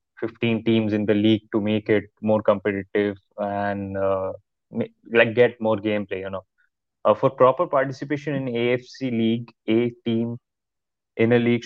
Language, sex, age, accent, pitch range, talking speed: English, male, 20-39, Indian, 110-120 Hz, 160 wpm